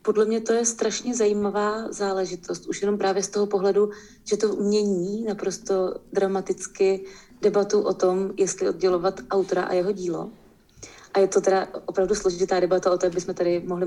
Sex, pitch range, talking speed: female, 190-210 Hz, 175 wpm